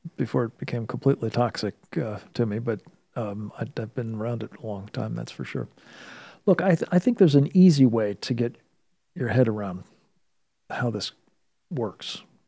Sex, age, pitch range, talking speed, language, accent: male, 50-69, 110-135 Hz, 185 wpm, English, American